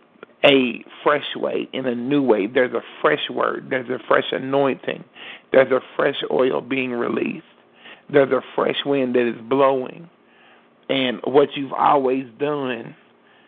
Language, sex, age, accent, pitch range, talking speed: English, male, 40-59, American, 130-145 Hz, 145 wpm